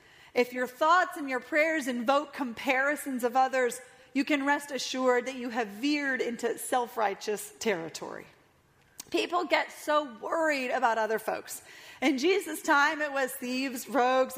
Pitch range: 220-275 Hz